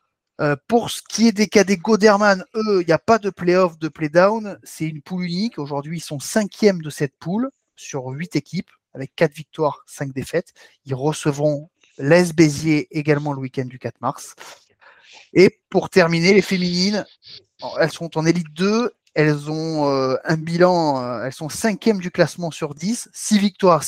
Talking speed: 175 wpm